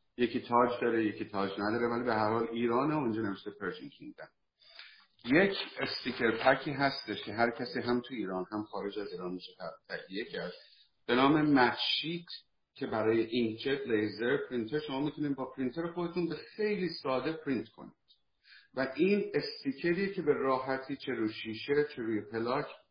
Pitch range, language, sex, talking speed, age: 110-145 Hz, Persian, male, 160 wpm, 50-69